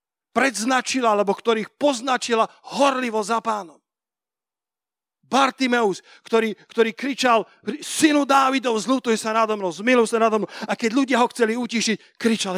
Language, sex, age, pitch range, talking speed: Slovak, male, 40-59, 185-235 Hz, 125 wpm